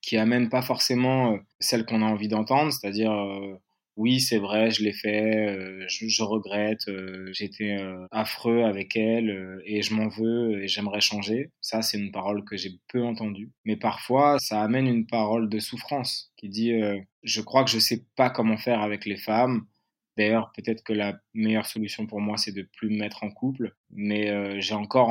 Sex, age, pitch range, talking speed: male, 20-39, 105-120 Hz, 195 wpm